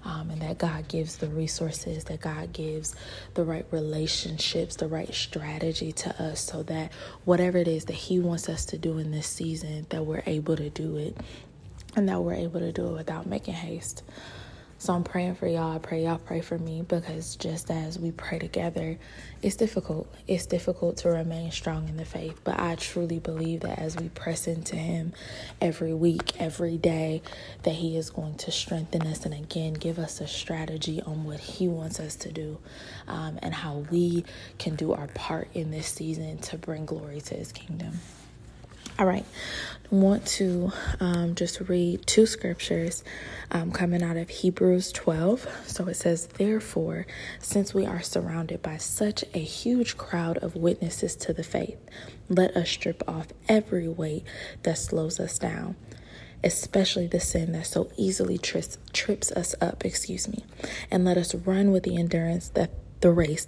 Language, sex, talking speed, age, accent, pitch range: English, female, 180 wpm, 20-39, American, 160-175 Hz